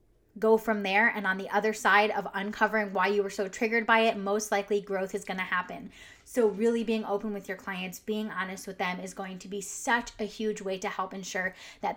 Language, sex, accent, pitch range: English, female, American, 195-230 Hz